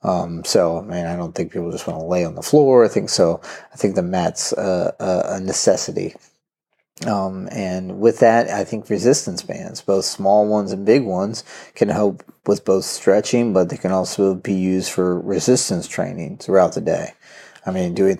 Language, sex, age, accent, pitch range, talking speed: English, male, 30-49, American, 90-100 Hz, 195 wpm